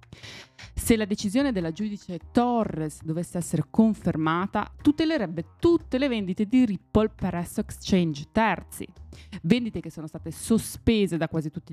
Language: Italian